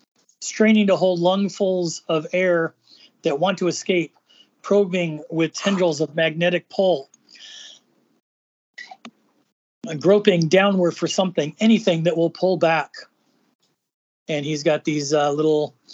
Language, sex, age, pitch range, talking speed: English, male, 30-49, 160-210 Hz, 115 wpm